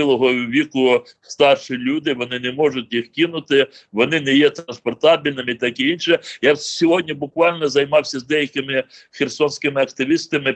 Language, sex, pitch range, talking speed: Ukrainian, male, 130-165 Hz, 140 wpm